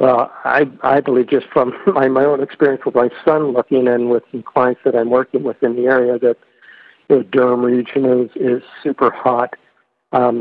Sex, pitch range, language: male, 125-145 Hz, English